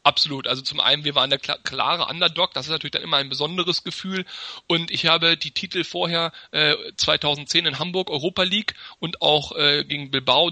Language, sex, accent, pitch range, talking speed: German, male, German, 150-190 Hz, 195 wpm